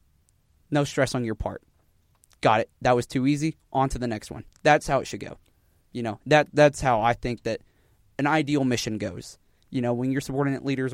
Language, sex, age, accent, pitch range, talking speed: English, male, 20-39, American, 125-160 Hz, 215 wpm